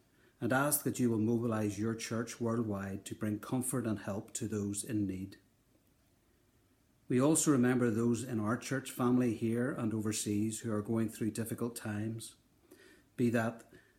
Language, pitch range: English, 110-125 Hz